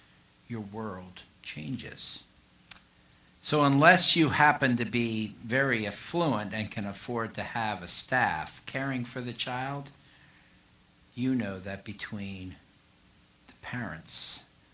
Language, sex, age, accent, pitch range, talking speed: English, male, 60-79, American, 100-125 Hz, 115 wpm